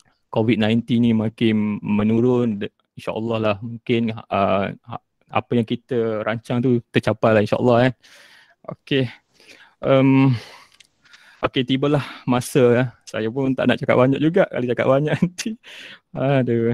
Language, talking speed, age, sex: Malay, 135 wpm, 20-39, male